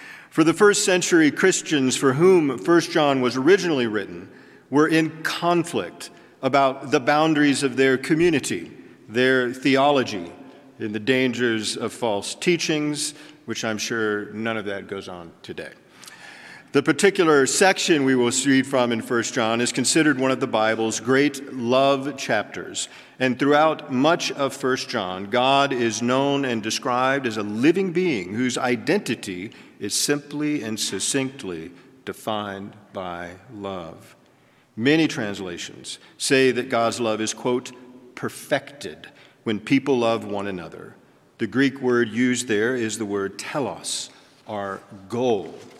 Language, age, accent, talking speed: English, 40-59, American, 140 wpm